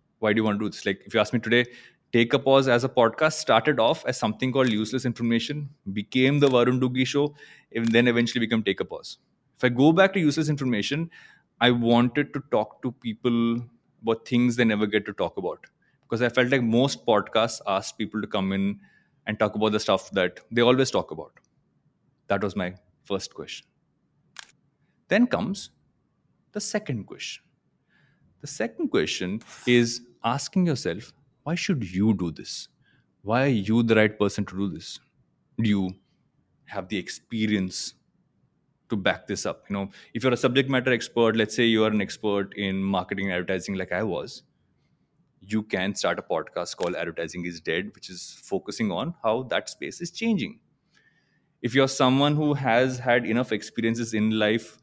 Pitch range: 105-130 Hz